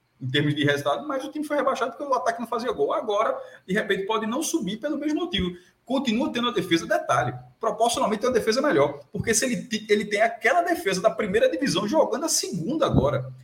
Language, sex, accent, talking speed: Portuguese, male, Brazilian, 215 wpm